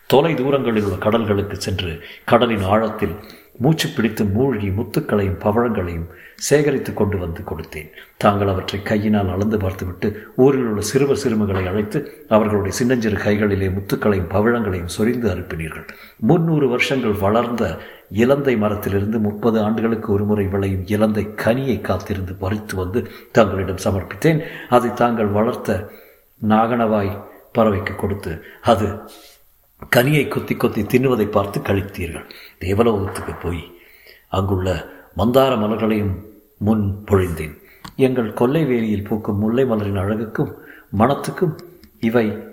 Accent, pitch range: native, 100-120 Hz